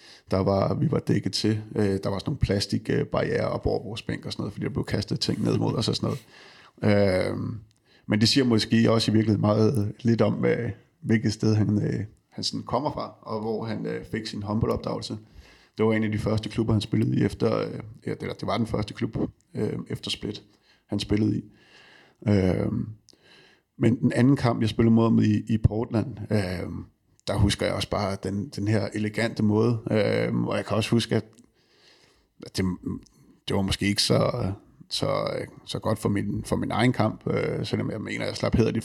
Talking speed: 205 wpm